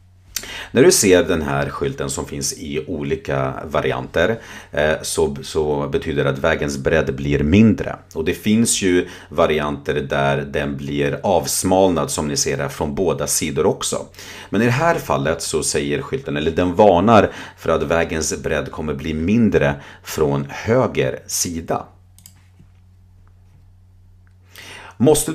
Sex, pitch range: male, 75-95 Hz